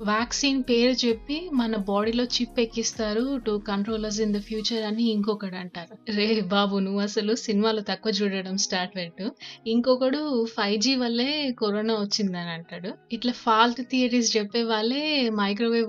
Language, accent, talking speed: Telugu, native, 135 wpm